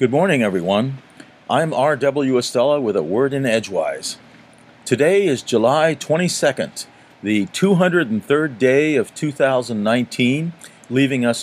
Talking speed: 115 wpm